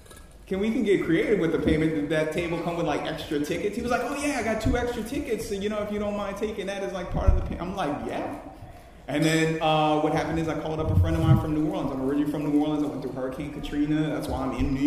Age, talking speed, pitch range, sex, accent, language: 30-49, 305 wpm, 145-160 Hz, male, American, English